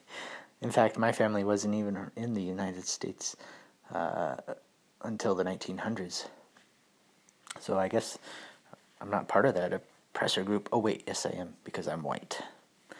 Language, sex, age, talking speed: English, male, 30-49, 150 wpm